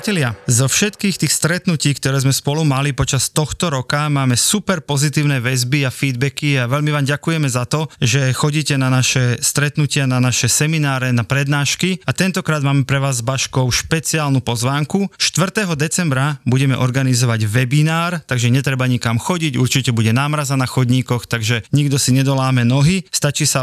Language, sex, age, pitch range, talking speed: Slovak, male, 30-49, 125-150 Hz, 160 wpm